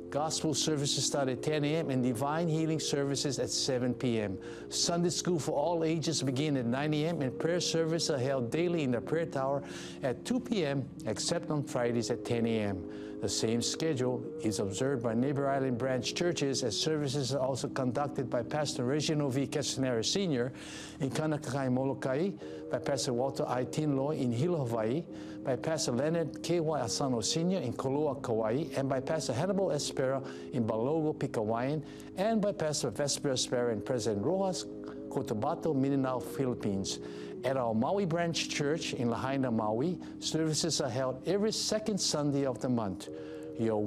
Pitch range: 125-155 Hz